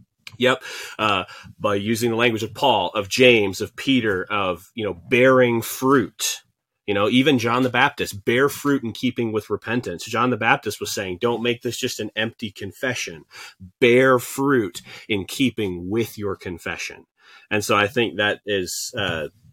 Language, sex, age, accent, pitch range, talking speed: English, male, 30-49, American, 95-120 Hz, 165 wpm